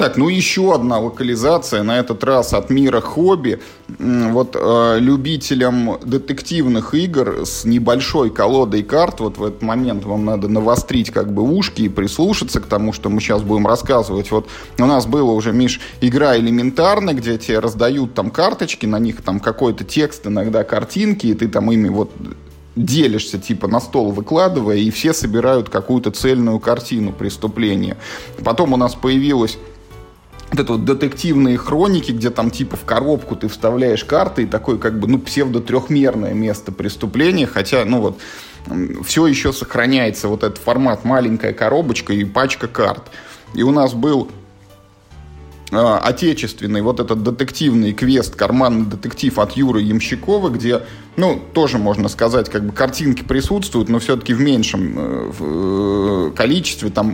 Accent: native